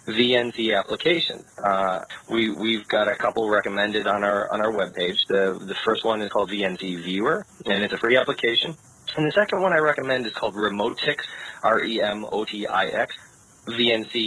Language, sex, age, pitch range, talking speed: English, male, 30-49, 95-120 Hz, 160 wpm